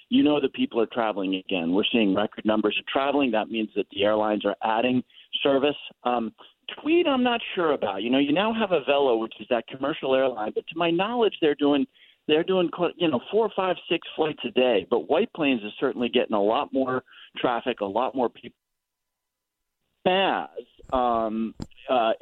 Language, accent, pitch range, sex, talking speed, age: English, American, 110-145 Hz, male, 190 wpm, 40-59